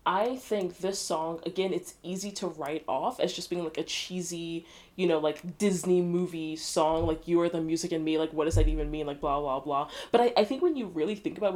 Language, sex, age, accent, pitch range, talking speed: English, female, 20-39, American, 160-200 Hz, 255 wpm